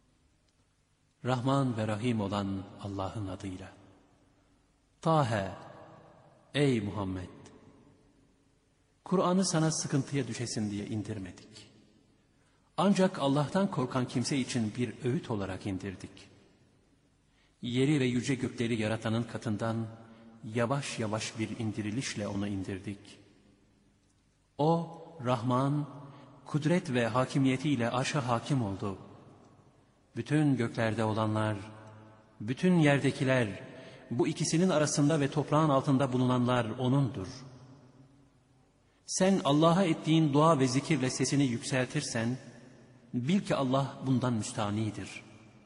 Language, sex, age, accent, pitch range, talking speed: Turkish, male, 50-69, native, 110-140 Hz, 90 wpm